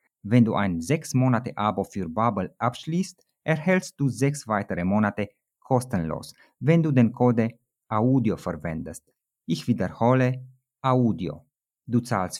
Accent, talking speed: native, 125 wpm